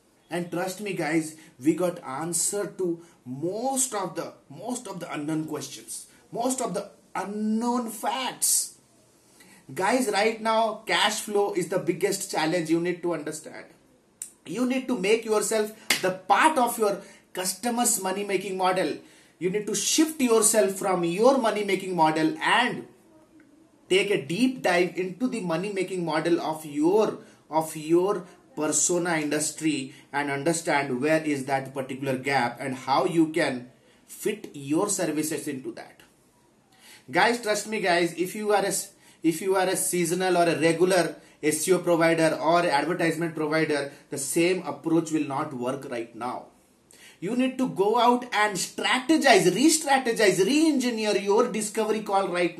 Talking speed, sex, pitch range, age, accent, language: 150 wpm, male, 165-220 Hz, 30-49, native, Hindi